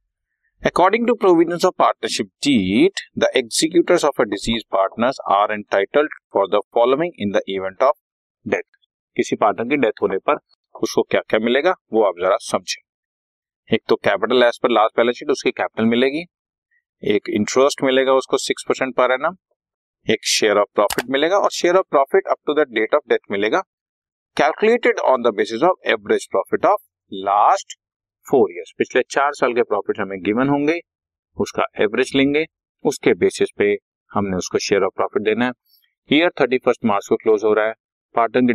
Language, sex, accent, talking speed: Hindi, male, native, 125 wpm